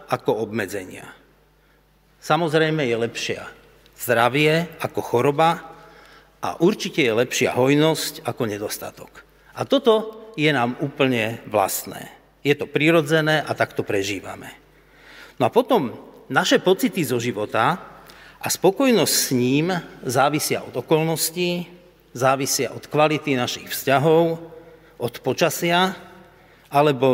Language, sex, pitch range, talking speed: Slovak, male, 125-170 Hz, 110 wpm